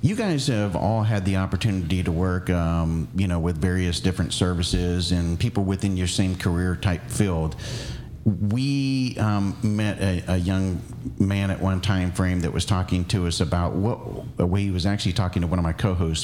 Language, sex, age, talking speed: English, male, 40-59, 190 wpm